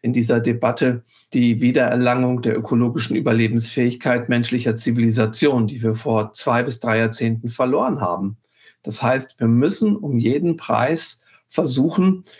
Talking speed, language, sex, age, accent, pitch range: 130 wpm, German, male, 50-69, German, 115-135 Hz